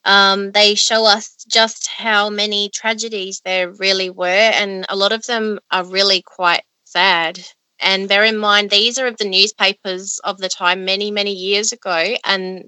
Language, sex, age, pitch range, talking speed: English, female, 20-39, 185-220 Hz, 175 wpm